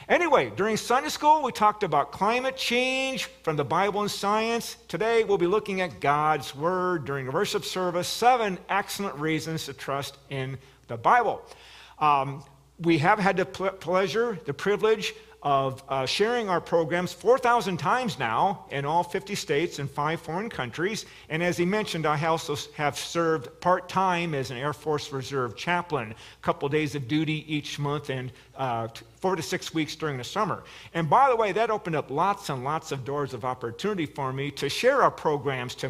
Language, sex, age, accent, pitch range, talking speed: English, male, 50-69, American, 145-210 Hz, 180 wpm